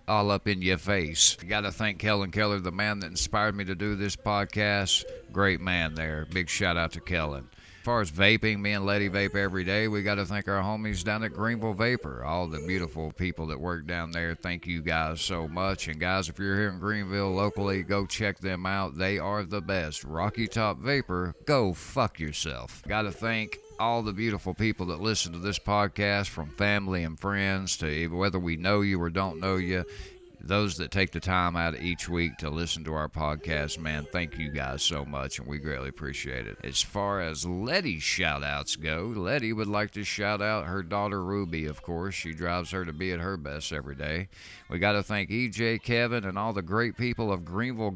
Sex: male